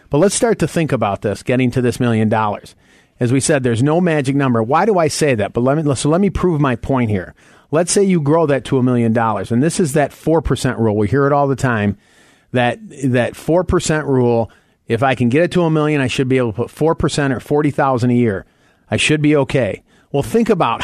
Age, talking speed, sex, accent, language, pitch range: 40-59, 245 wpm, male, American, English, 120-155 Hz